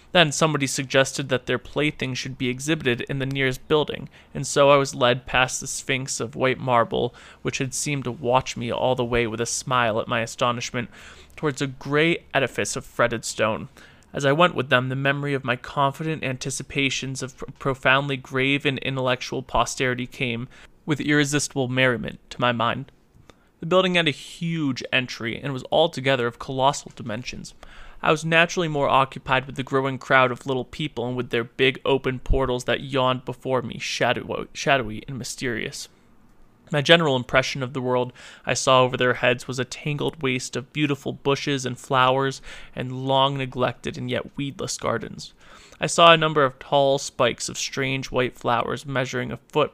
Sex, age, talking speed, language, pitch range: male, 30-49, 180 wpm, English, 125-140 Hz